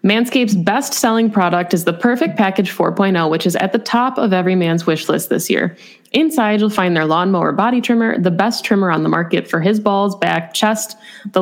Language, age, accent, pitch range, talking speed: English, 20-39, American, 180-230 Hz, 210 wpm